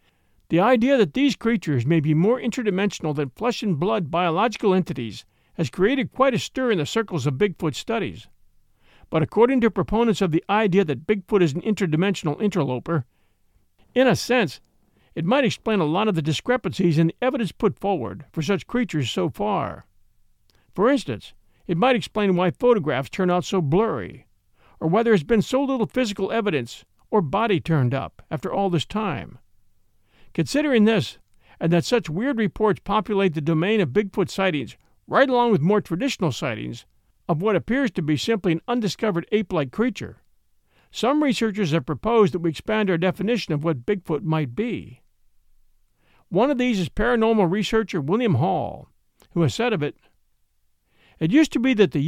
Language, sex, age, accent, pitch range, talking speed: English, male, 50-69, American, 155-220 Hz, 170 wpm